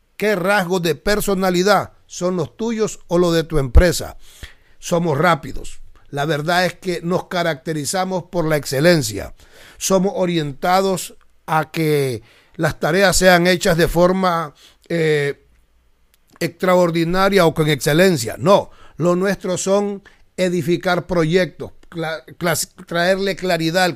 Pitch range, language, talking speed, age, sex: 150-190 Hz, Spanish, 120 wpm, 60-79, male